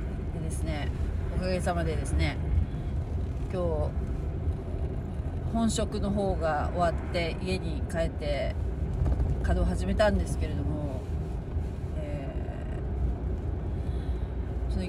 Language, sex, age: Japanese, female, 40-59